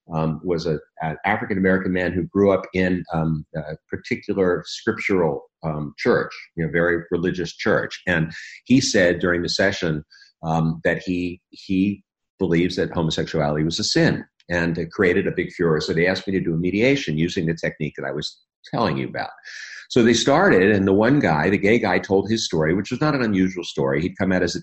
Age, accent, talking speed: 50-69, American, 195 wpm